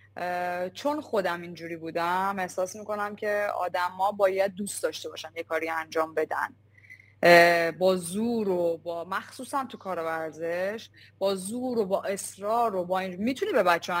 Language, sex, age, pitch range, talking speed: Persian, female, 20-39, 170-220 Hz, 155 wpm